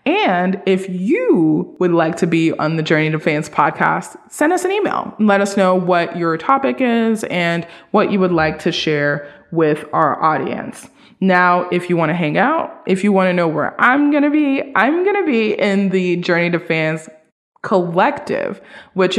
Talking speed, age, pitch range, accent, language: 195 wpm, 20-39, 165-220 Hz, American, English